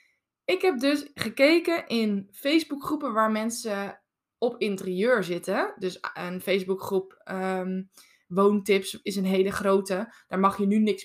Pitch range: 195-265 Hz